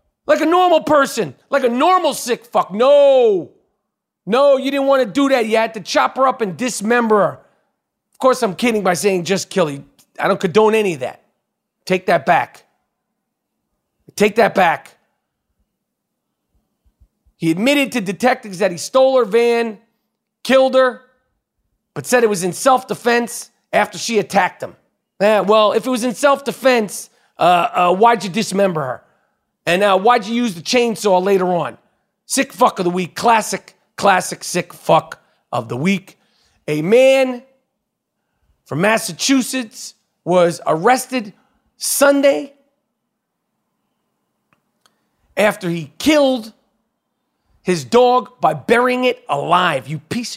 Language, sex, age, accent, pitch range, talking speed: English, male, 40-59, American, 195-255 Hz, 140 wpm